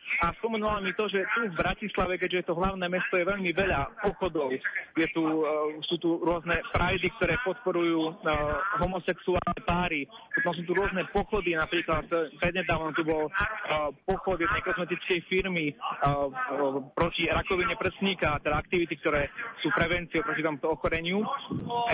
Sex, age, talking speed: male, 30-49, 140 wpm